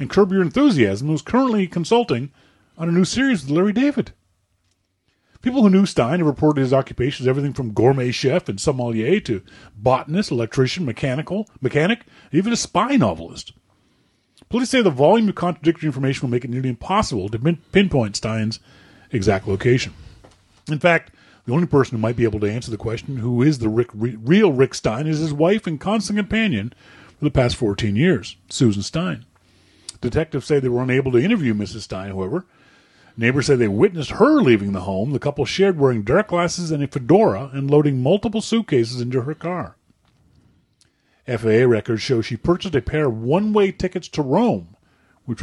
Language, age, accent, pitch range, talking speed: English, 40-59, American, 115-170 Hz, 180 wpm